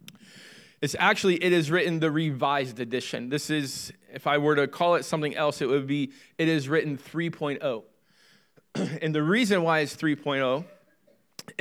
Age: 20-39